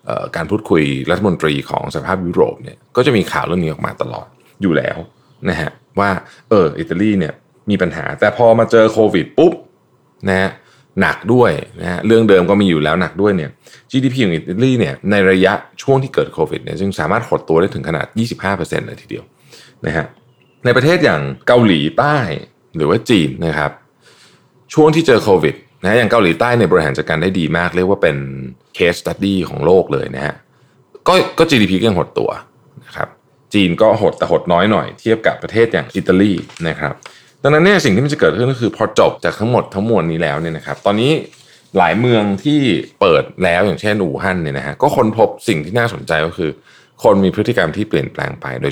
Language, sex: Thai, male